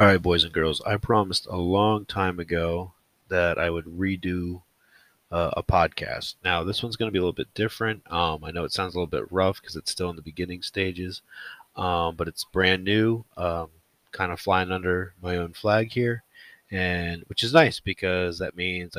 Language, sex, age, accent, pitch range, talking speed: English, male, 30-49, American, 85-100 Hz, 205 wpm